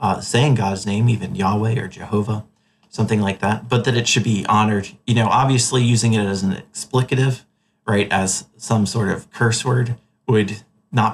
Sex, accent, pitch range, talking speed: male, American, 105-120 Hz, 185 wpm